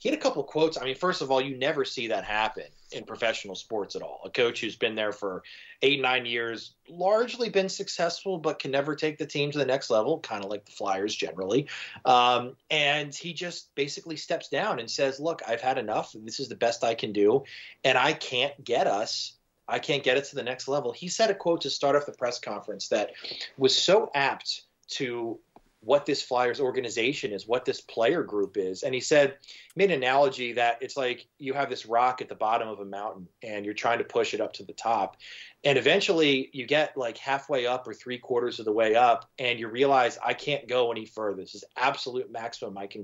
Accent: American